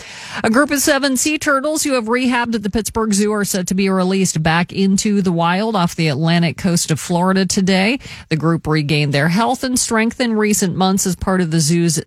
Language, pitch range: English, 170-225 Hz